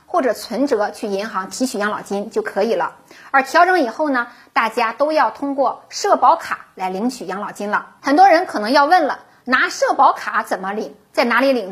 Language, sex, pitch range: Chinese, female, 210-310 Hz